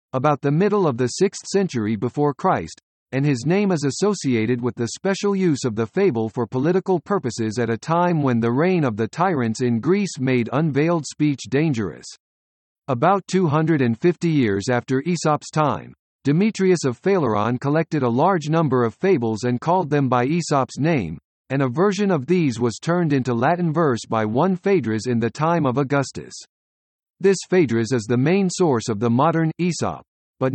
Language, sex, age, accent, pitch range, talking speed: English, male, 50-69, American, 120-175 Hz, 175 wpm